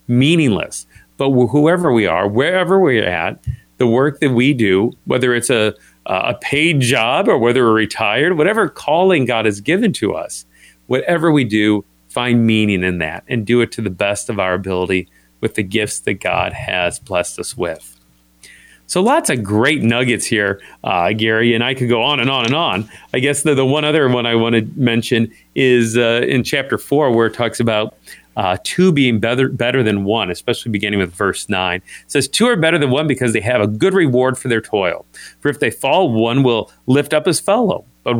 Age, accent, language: 40-59, American, English